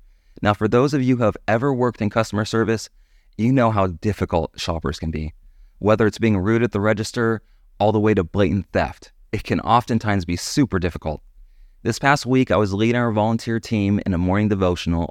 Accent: American